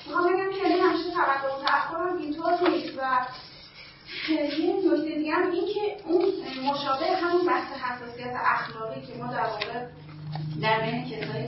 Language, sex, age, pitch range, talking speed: Persian, female, 30-49, 210-290 Hz, 145 wpm